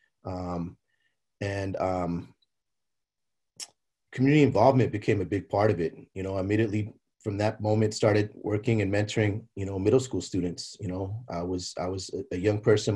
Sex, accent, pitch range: male, American, 95-115 Hz